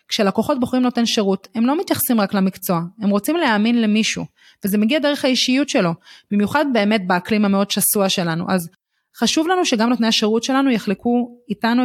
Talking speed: 165 wpm